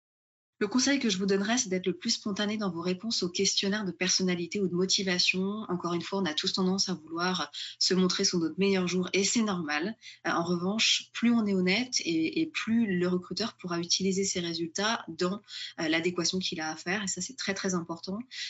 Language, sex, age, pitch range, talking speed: French, female, 20-39, 180-230 Hz, 210 wpm